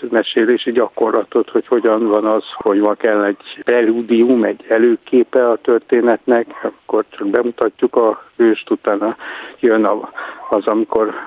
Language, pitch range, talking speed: Hungarian, 110-130 Hz, 130 wpm